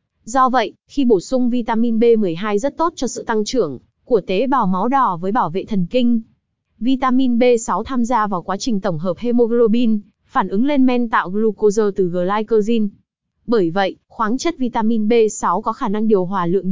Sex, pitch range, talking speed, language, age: female, 205-245 Hz, 190 wpm, Vietnamese, 20-39